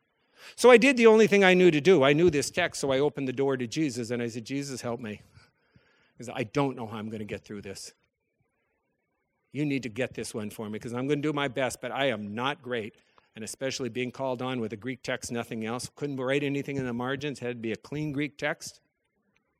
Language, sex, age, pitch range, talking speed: English, male, 50-69, 120-200 Hz, 250 wpm